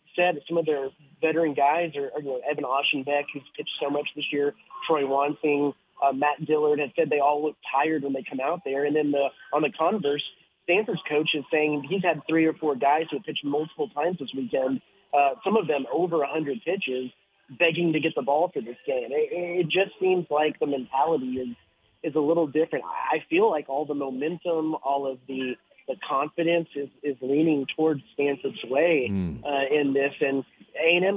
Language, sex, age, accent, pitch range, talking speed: English, male, 30-49, American, 140-160 Hz, 205 wpm